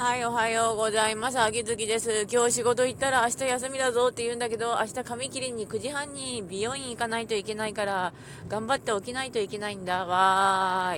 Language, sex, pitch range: Japanese, female, 160-225 Hz